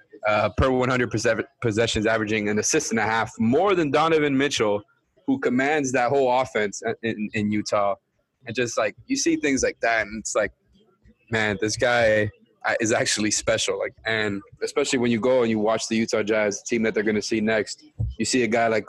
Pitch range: 110-130 Hz